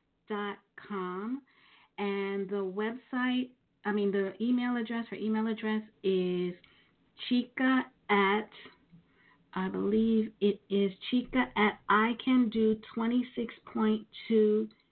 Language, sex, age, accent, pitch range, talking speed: English, female, 40-59, American, 180-215 Hz, 110 wpm